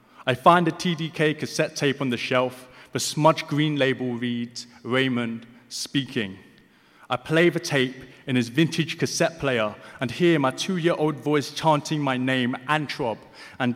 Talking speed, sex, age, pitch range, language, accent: 155 wpm, male, 30-49, 130-170 Hz, English, British